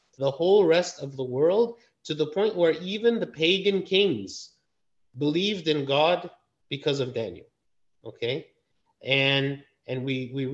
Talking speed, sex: 140 wpm, male